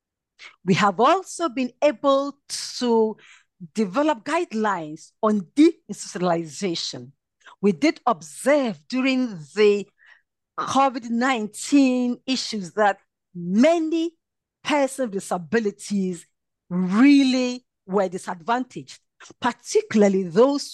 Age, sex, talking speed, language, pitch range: 50-69, female, 80 wpm, English, 190-270 Hz